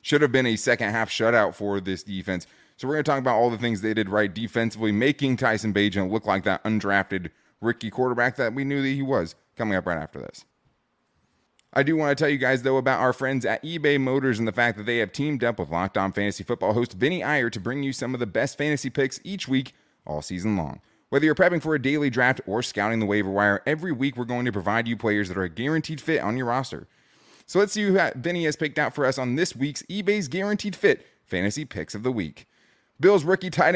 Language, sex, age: English, male, 20-39